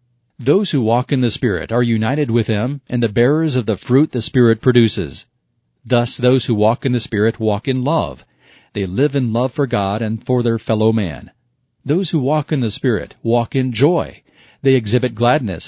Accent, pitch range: American, 110-130 Hz